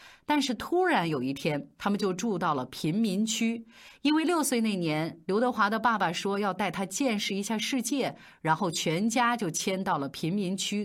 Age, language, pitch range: 30-49, Chinese, 170-245 Hz